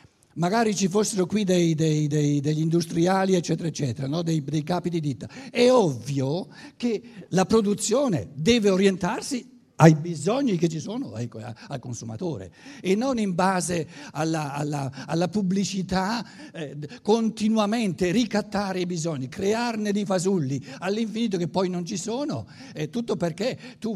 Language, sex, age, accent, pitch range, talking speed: Italian, male, 60-79, native, 145-200 Hz, 130 wpm